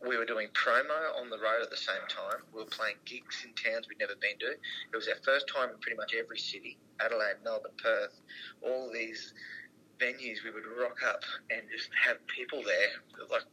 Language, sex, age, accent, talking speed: English, male, 30-49, Australian, 210 wpm